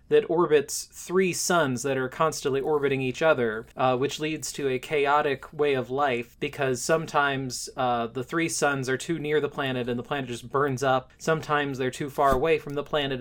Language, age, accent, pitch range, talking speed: English, 20-39, American, 130-160 Hz, 200 wpm